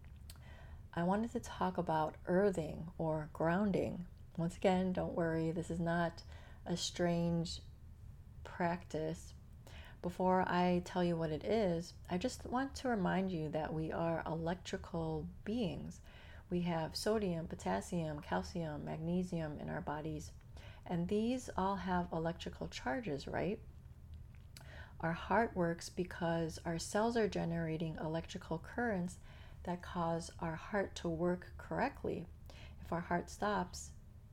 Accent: American